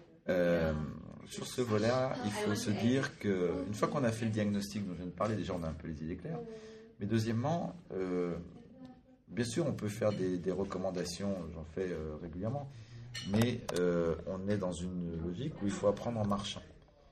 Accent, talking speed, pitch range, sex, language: French, 200 wpm, 85-115 Hz, male, French